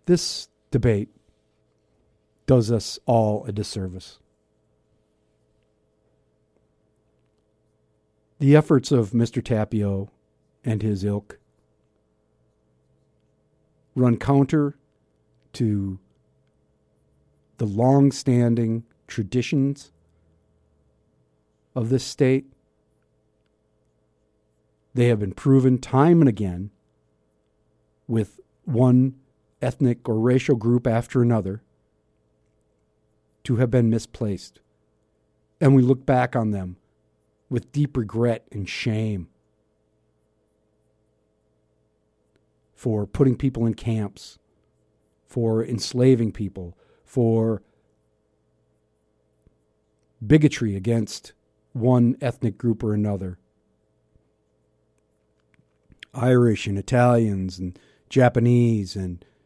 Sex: male